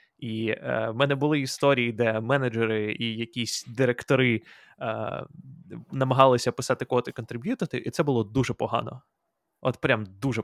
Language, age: Ukrainian, 20-39